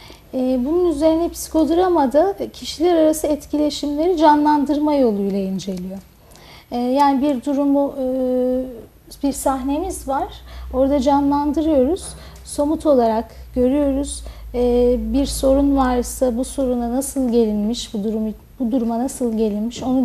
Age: 40-59